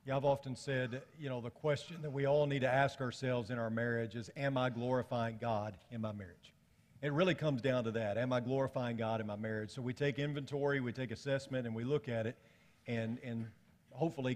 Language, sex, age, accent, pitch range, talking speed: English, male, 50-69, American, 115-140 Hz, 225 wpm